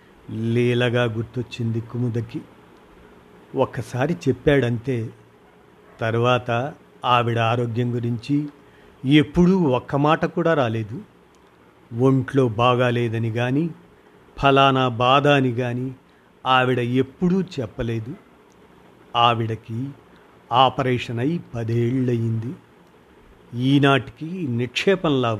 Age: 50-69